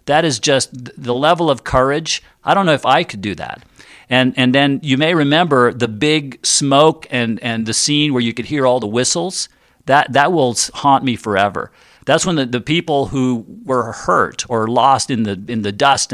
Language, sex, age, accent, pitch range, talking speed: English, male, 50-69, American, 115-145 Hz, 210 wpm